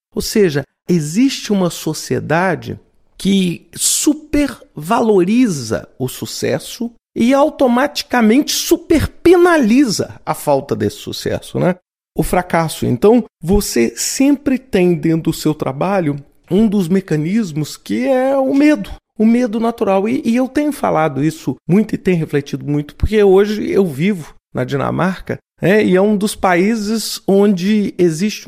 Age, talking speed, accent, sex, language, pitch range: 40-59, 130 wpm, Brazilian, male, Portuguese, 160-230 Hz